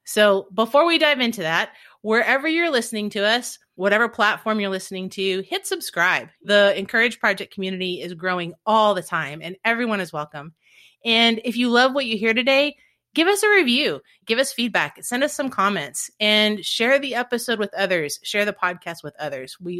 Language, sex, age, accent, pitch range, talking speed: English, female, 30-49, American, 190-265 Hz, 190 wpm